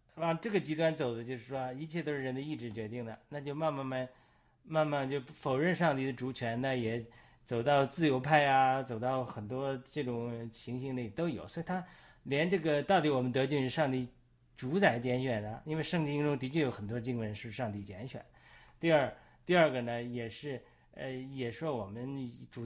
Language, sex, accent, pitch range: Chinese, male, native, 120-155 Hz